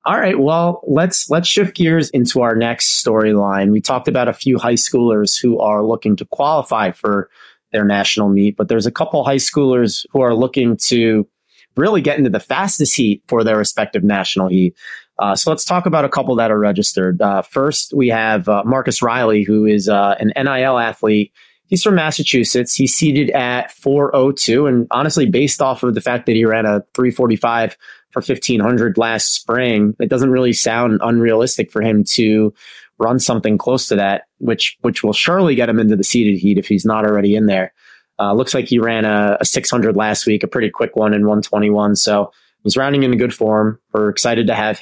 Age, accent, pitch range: 30-49, American, 105-135 Hz